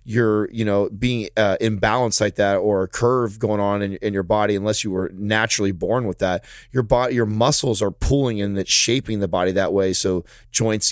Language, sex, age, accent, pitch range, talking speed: English, male, 30-49, American, 100-120 Hz, 220 wpm